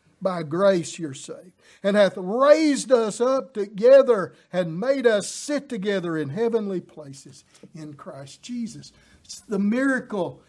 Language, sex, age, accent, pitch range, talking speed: English, male, 50-69, American, 170-235 Hz, 135 wpm